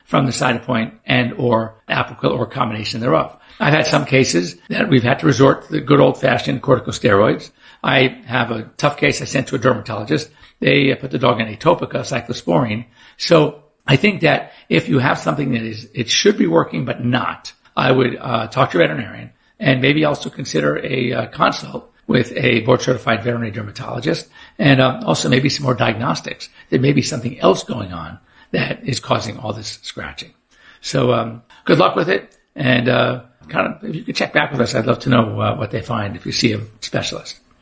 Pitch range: 115-135 Hz